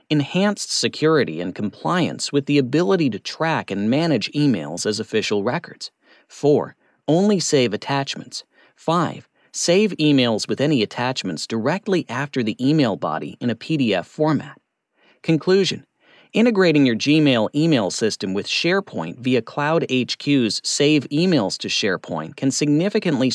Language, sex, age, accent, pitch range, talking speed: English, male, 40-59, American, 125-175 Hz, 130 wpm